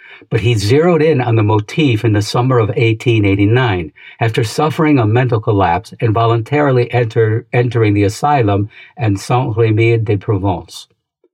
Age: 60-79